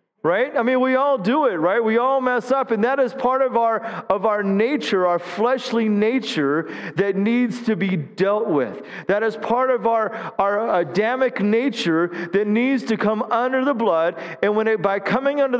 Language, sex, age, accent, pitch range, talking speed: English, male, 40-59, American, 220-260 Hz, 195 wpm